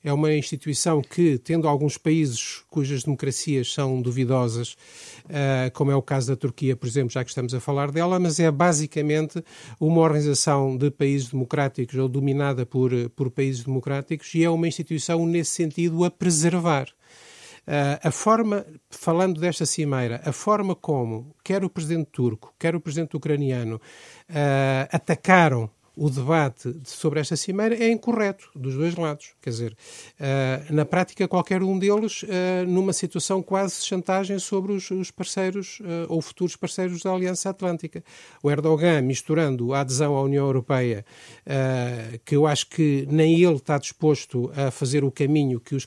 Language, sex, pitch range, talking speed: Portuguese, male, 130-170 Hz, 150 wpm